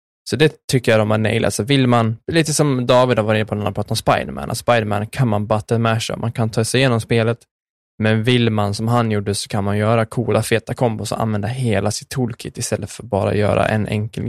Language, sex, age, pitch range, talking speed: Swedish, male, 10-29, 105-120 Hz, 240 wpm